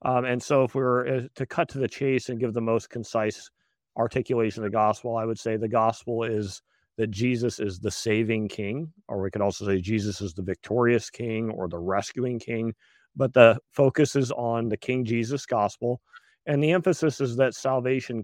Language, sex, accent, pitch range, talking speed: English, male, American, 110-130 Hz, 200 wpm